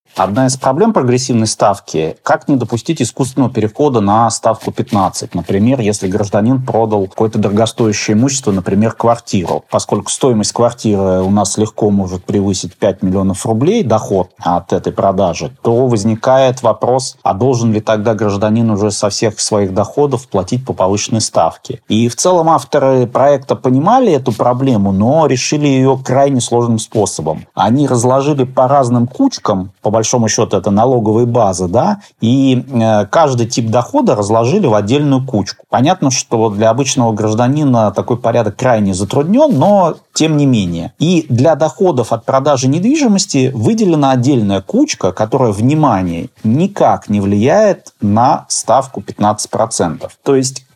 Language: Russian